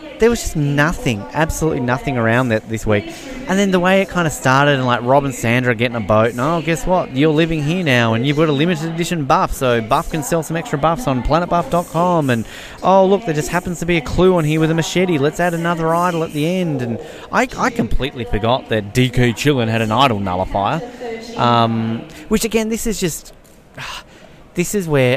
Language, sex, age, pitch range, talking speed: English, male, 30-49, 115-160 Hz, 220 wpm